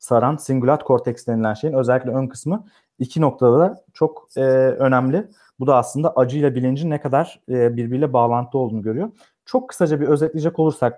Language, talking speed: Turkish, 170 wpm